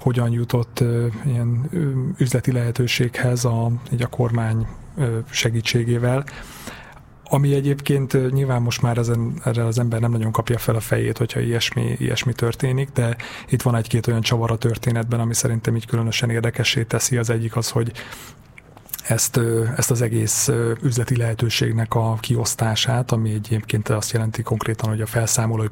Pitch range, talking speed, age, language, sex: 115-125 Hz, 145 wpm, 30-49, Hungarian, male